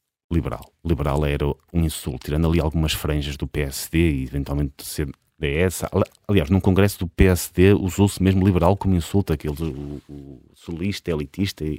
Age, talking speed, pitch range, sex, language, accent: 30-49, 165 wpm, 80-95 Hz, male, Portuguese, Portuguese